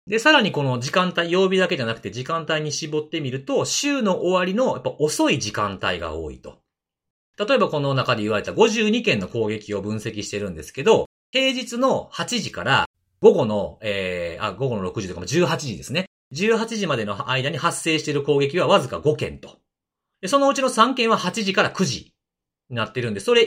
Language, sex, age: Japanese, male, 40-59